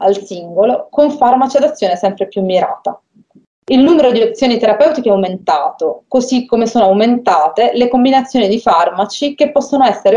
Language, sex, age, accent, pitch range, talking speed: Italian, female, 30-49, native, 195-265 Hz, 160 wpm